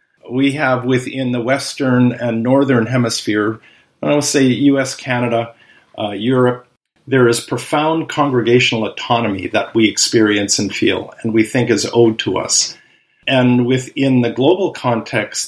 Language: English